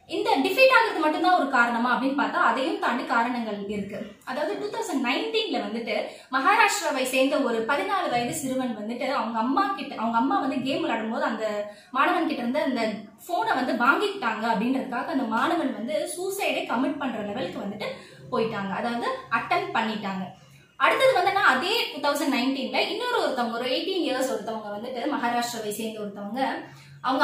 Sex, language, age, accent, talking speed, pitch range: female, Tamil, 20-39, native, 150 wpm, 230-300 Hz